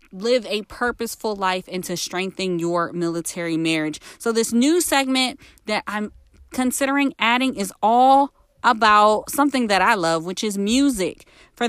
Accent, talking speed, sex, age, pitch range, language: American, 150 wpm, female, 20-39, 175-225 Hz, English